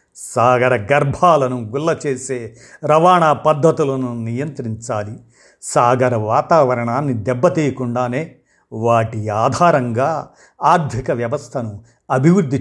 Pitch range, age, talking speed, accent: 115-145 Hz, 50-69, 70 wpm, native